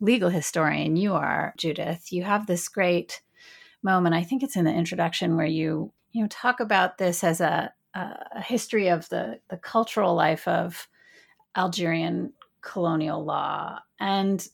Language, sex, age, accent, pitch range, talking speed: English, female, 30-49, American, 170-220 Hz, 155 wpm